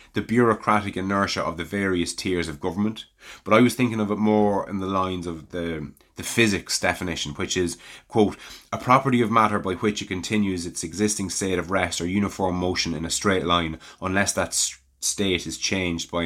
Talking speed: 195 wpm